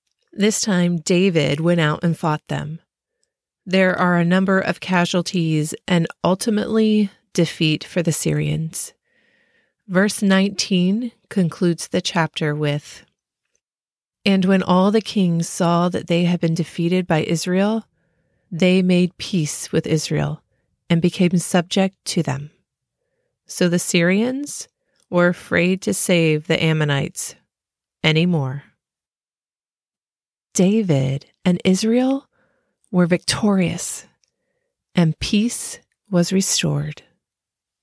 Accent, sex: American, female